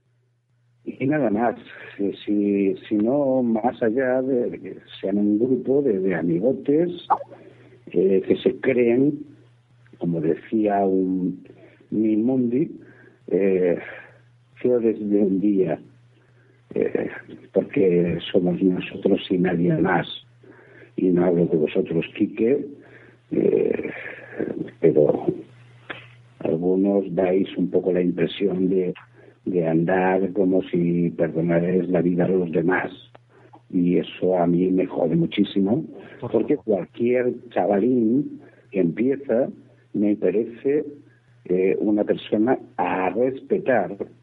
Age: 60-79